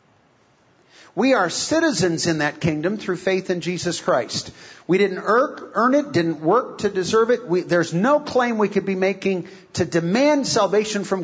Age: 50-69